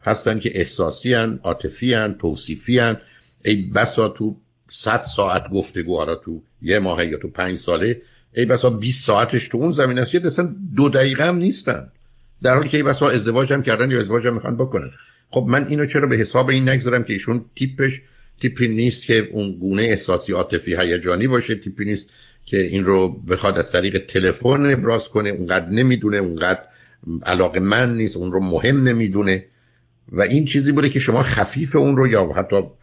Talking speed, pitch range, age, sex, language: 175 wpm, 100-130 Hz, 60-79, male, Persian